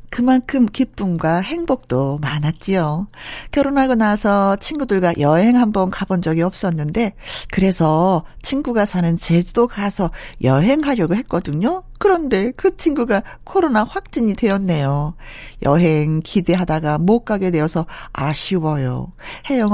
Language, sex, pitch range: Korean, female, 165-245 Hz